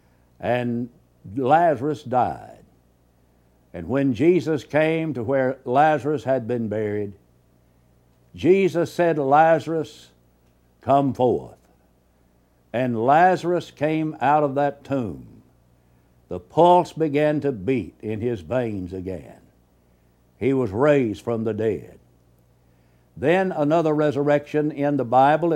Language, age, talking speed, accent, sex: English, 60-79, 110 wpm, American, male